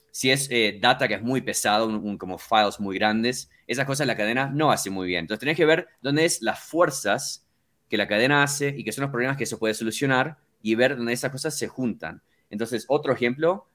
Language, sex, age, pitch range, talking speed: Spanish, male, 20-39, 105-140 Hz, 230 wpm